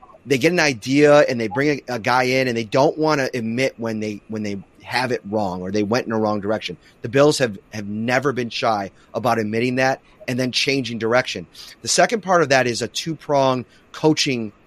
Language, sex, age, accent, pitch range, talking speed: English, male, 30-49, American, 115-155 Hz, 215 wpm